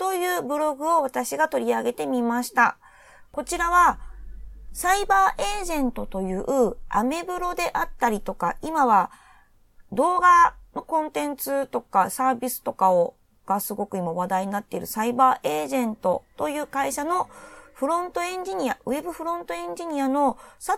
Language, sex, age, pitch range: Japanese, female, 30-49, 215-330 Hz